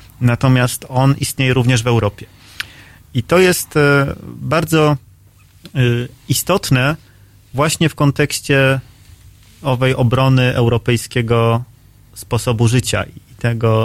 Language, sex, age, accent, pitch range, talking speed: Polish, male, 30-49, native, 105-130 Hz, 90 wpm